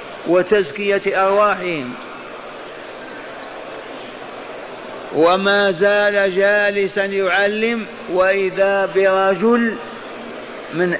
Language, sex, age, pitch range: Arabic, male, 50-69, 175-205 Hz